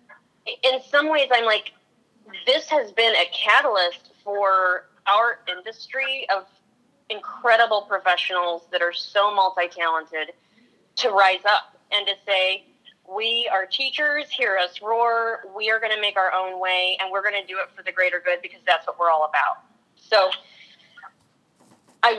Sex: female